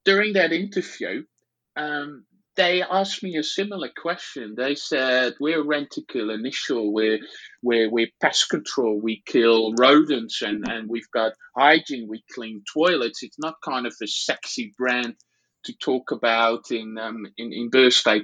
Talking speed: 150 wpm